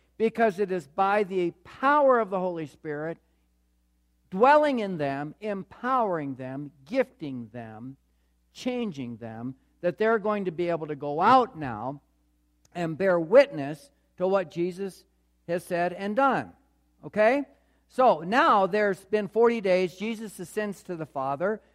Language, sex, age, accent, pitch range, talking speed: English, male, 50-69, American, 145-220 Hz, 140 wpm